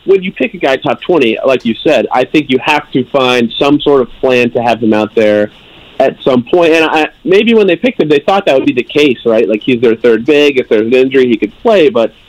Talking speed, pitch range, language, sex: 275 wpm, 115-150 Hz, English, male